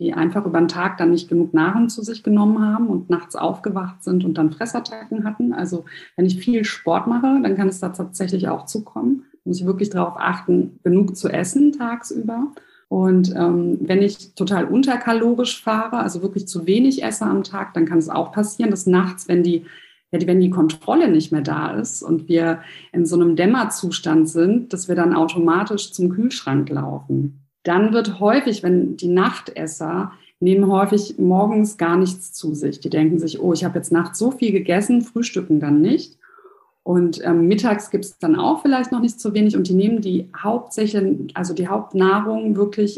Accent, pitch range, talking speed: German, 170-215 Hz, 185 wpm